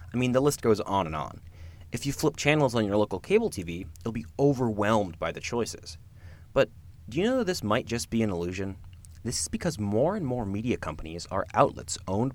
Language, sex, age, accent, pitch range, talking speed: English, male, 20-39, American, 85-110 Hz, 220 wpm